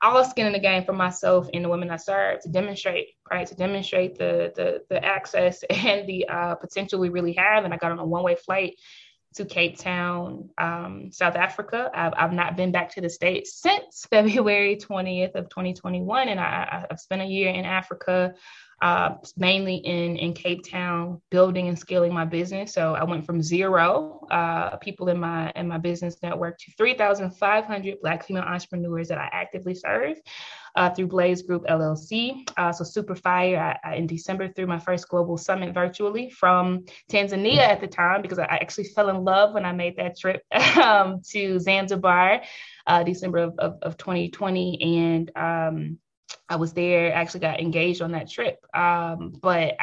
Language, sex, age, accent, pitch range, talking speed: English, female, 20-39, American, 175-205 Hz, 180 wpm